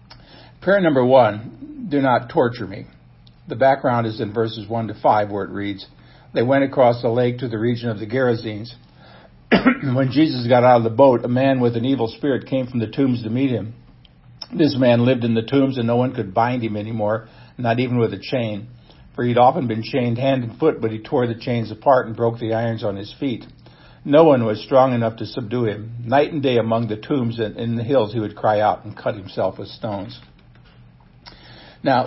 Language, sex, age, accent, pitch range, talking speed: English, male, 60-79, American, 110-130 Hz, 215 wpm